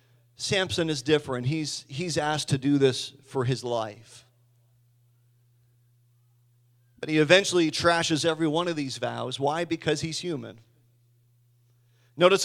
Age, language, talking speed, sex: 40-59, English, 125 wpm, male